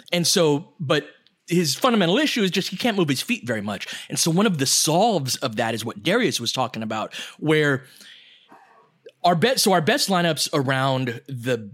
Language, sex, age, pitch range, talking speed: English, male, 20-39, 135-180 Hz, 195 wpm